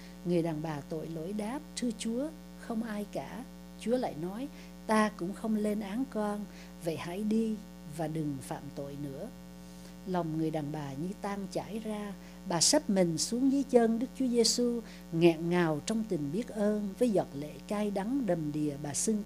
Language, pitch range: English, 160-225 Hz